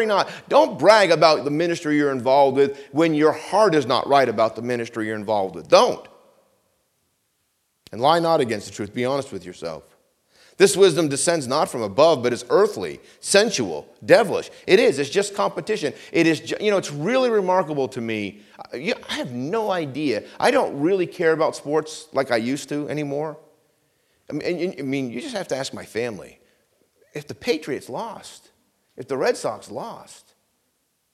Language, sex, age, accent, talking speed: English, male, 40-59, American, 175 wpm